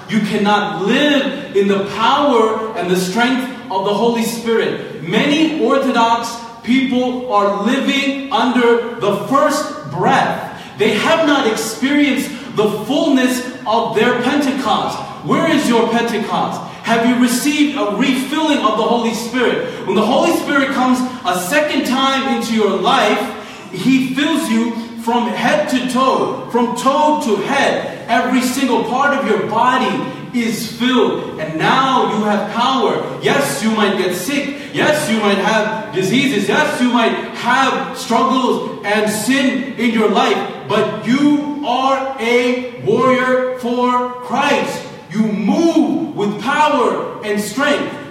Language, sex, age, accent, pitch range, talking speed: English, male, 40-59, American, 220-270 Hz, 140 wpm